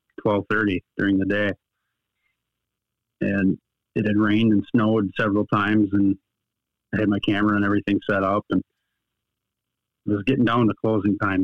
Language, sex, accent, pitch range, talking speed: English, male, American, 100-110 Hz, 150 wpm